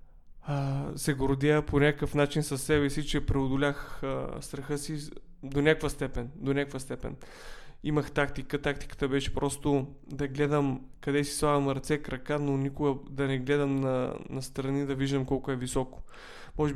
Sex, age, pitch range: male, 20-39, 135-150 Hz